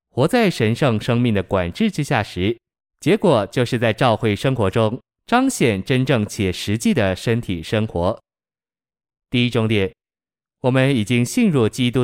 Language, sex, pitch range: Chinese, male, 105-135 Hz